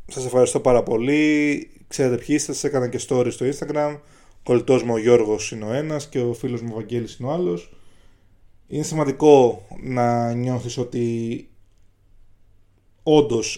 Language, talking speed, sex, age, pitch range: Greek, 155 wpm, male, 20-39, 105-155 Hz